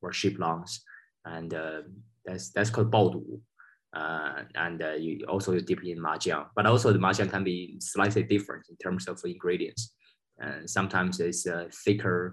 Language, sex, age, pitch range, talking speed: Russian, male, 20-39, 90-105 Hz, 170 wpm